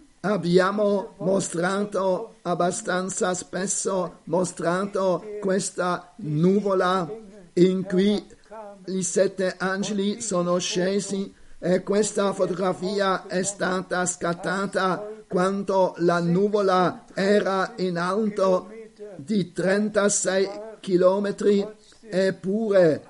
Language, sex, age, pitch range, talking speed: Italian, male, 50-69, 180-200 Hz, 80 wpm